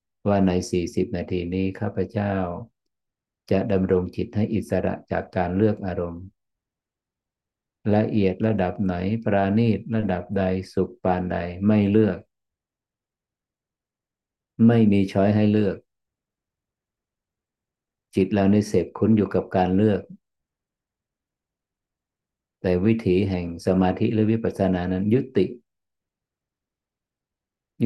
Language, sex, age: Thai, male, 50-69